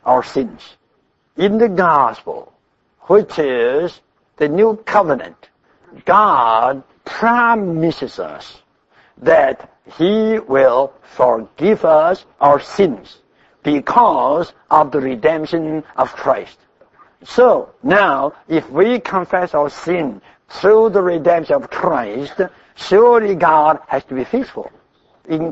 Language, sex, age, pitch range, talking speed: English, male, 60-79, 150-220 Hz, 105 wpm